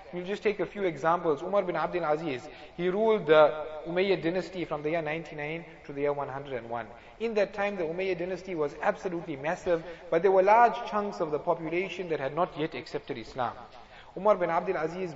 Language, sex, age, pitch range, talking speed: English, male, 30-49, 155-195 Hz, 200 wpm